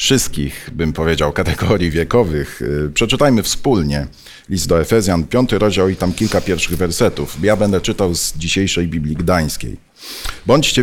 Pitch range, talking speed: 85-110 Hz, 140 wpm